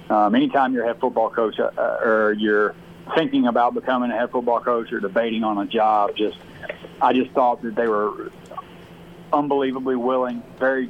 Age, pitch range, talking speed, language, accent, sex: 40-59, 115-130 Hz, 175 wpm, English, American, male